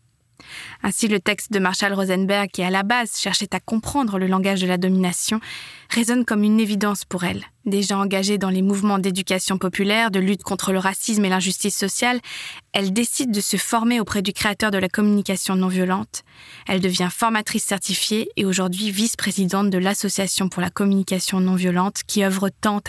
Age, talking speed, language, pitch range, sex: 20-39, 175 wpm, French, 185-210 Hz, female